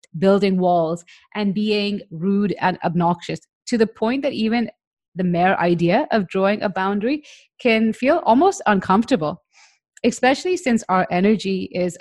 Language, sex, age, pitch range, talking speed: English, female, 30-49, 180-220 Hz, 140 wpm